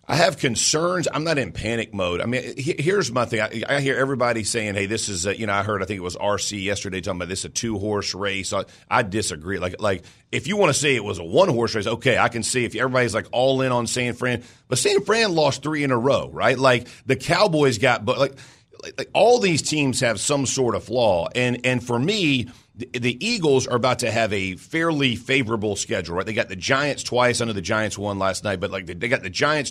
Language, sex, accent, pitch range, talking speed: English, male, American, 110-140 Hz, 250 wpm